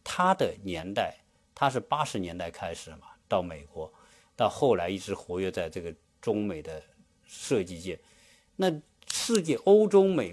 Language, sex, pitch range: Chinese, male, 100-160 Hz